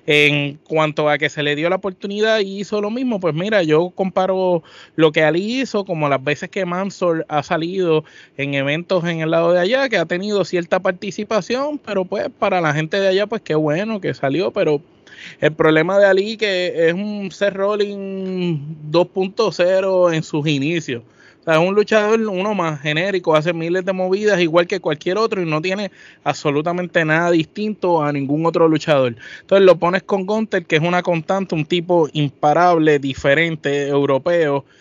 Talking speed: 185 wpm